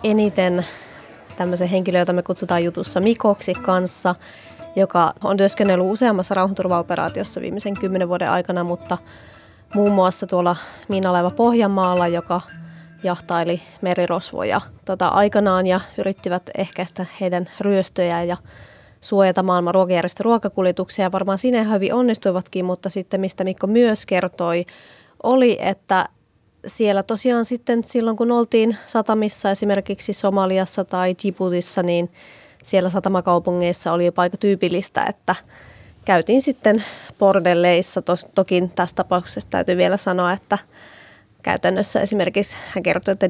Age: 20-39